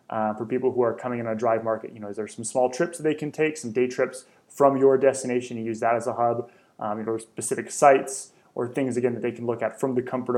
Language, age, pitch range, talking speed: English, 20-39, 120-145 Hz, 285 wpm